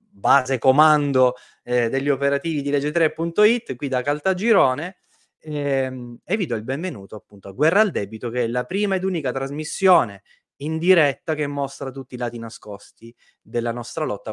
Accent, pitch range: native, 115-160 Hz